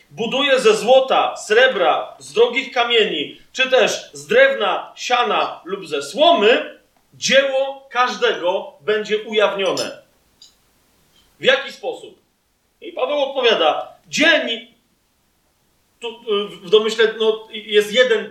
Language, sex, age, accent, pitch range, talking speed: Polish, male, 40-59, native, 210-275 Hz, 105 wpm